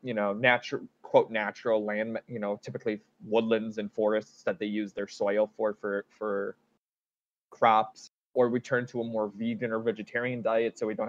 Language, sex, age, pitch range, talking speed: English, male, 20-39, 110-125 Hz, 185 wpm